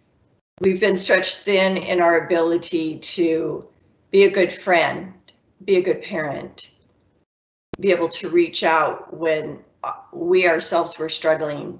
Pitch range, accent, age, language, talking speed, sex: 160-200 Hz, American, 40-59, English, 130 wpm, female